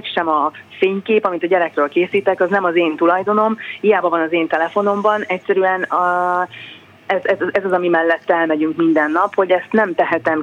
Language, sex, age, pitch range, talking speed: Hungarian, female, 30-49, 160-195 Hz, 180 wpm